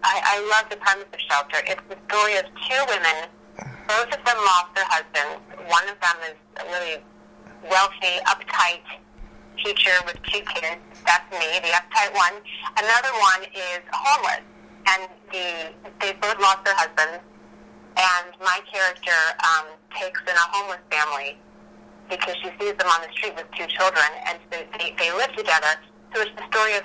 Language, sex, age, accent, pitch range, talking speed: English, female, 30-49, American, 170-210 Hz, 170 wpm